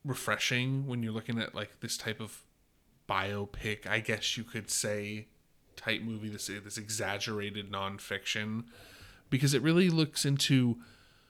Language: English